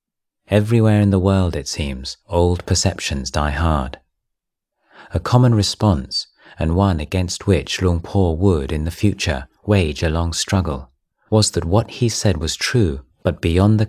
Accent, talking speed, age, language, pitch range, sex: British, 160 wpm, 30-49, English, 75-100 Hz, male